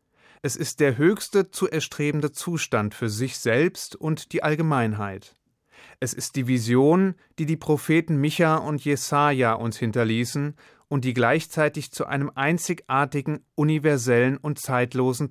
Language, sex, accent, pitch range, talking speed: German, male, German, 120-150 Hz, 135 wpm